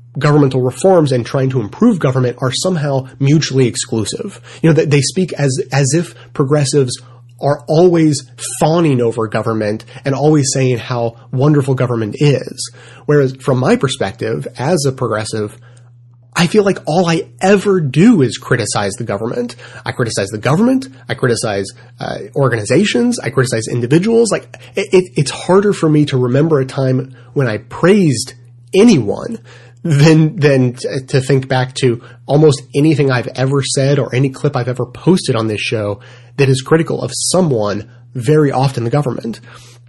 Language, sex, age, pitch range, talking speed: English, male, 30-49, 120-150 Hz, 160 wpm